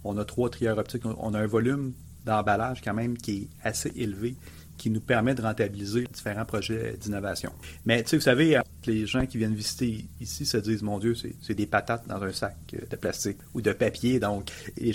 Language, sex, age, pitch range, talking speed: French, male, 30-49, 100-120 Hz, 210 wpm